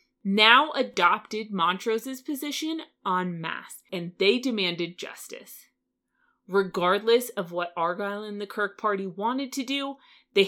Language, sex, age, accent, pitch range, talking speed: English, female, 30-49, American, 175-220 Hz, 125 wpm